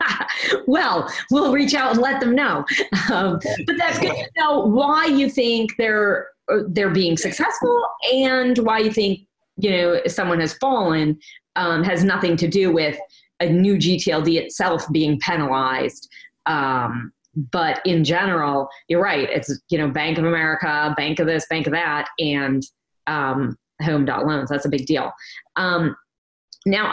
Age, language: 30-49, English